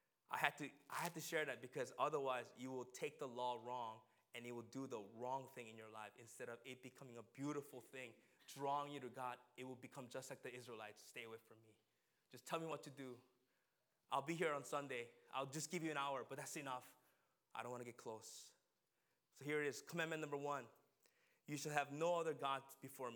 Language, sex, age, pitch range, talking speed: English, male, 20-39, 125-160 Hz, 230 wpm